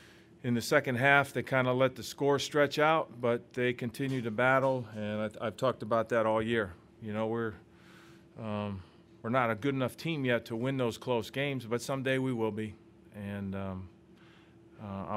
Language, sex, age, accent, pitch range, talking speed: English, male, 40-59, American, 115-145 Hz, 190 wpm